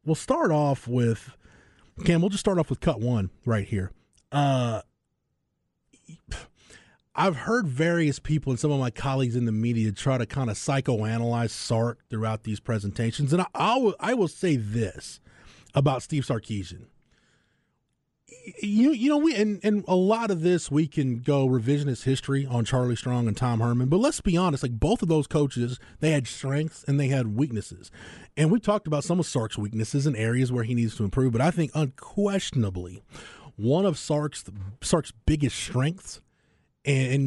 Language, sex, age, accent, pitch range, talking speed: English, male, 30-49, American, 115-155 Hz, 175 wpm